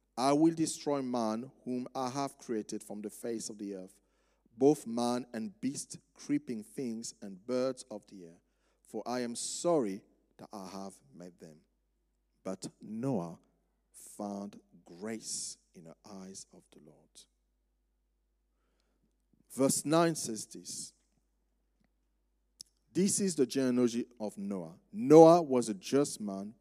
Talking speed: 135 wpm